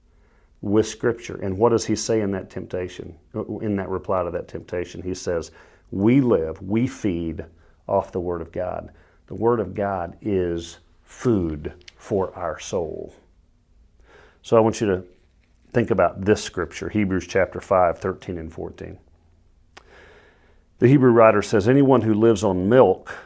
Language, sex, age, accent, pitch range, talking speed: English, male, 40-59, American, 90-120 Hz, 155 wpm